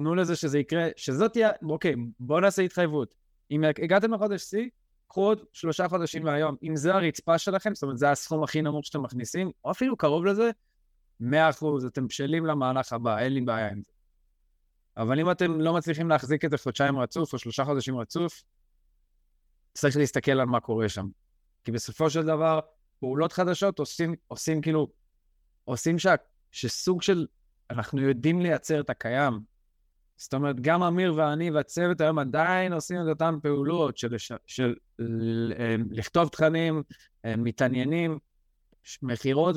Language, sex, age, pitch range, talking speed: Hebrew, male, 20-39, 125-165 Hz, 150 wpm